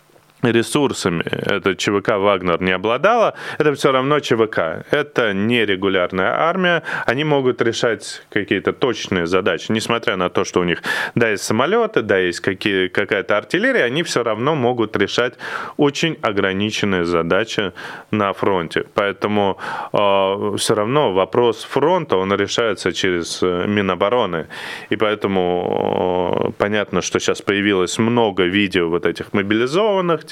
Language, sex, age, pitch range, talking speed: Russian, male, 20-39, 95-115 Hz, 130 wpm